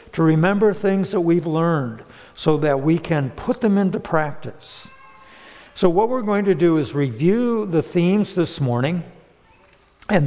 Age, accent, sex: 60-79, American, male